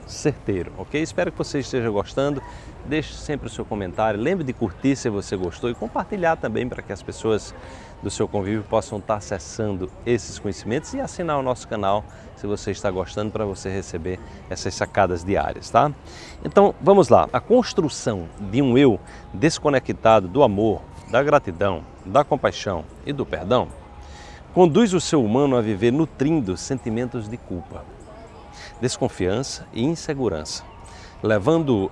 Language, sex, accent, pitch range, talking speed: Portuguese, male, Brazilian, 100-150 Hz, 150 wpm